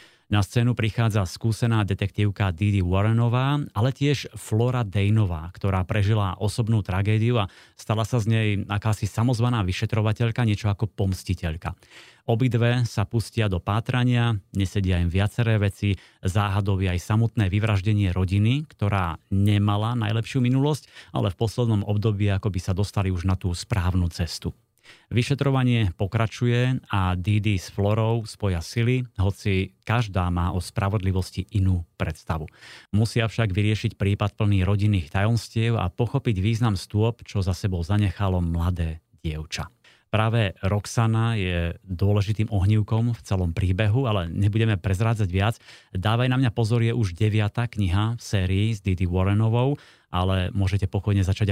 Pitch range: 95-115 Hz